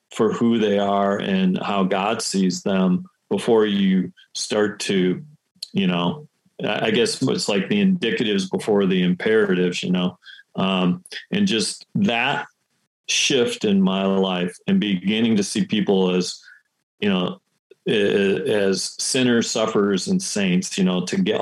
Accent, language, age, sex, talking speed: American, English, 40-59, male, 145 wpm